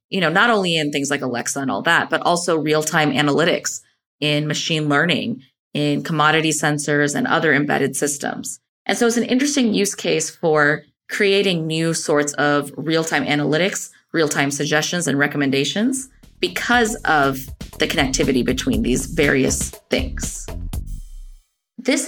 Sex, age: female, 30-49